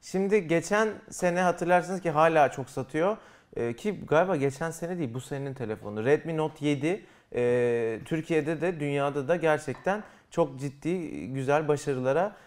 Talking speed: 145 wpm